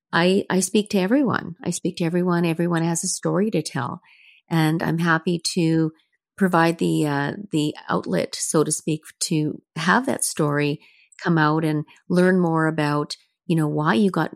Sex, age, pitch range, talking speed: female, 40-59, 150-180 Hz, 175 wpm